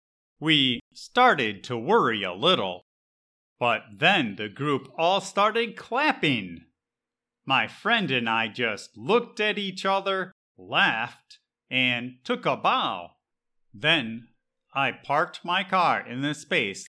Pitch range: 115-185 Hz